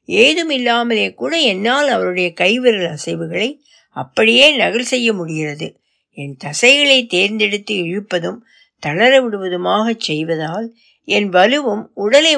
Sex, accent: female, native